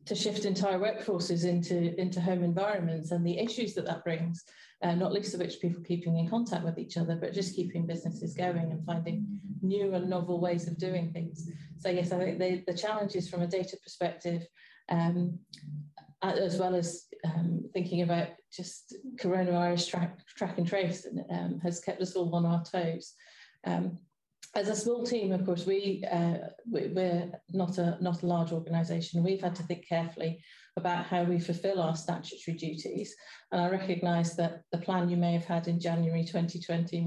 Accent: British